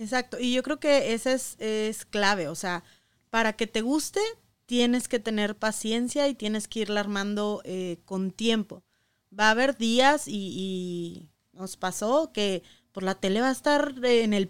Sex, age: female, 20-39